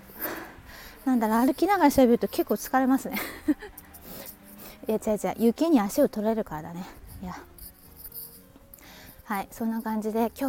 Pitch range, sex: 200-250 Hz, female